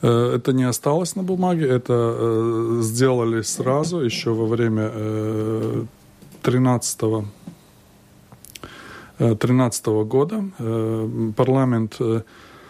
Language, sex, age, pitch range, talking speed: Russian, male, 20-39, 110-130 Hz, 65 wpm